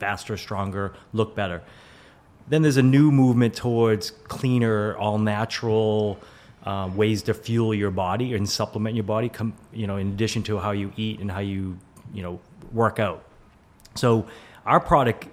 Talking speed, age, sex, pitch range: 160 wpm, 30-49, male, 100-115 Hz